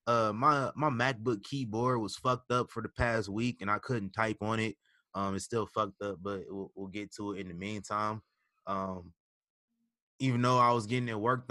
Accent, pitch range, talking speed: American, 105-130 Hz, 210 wpm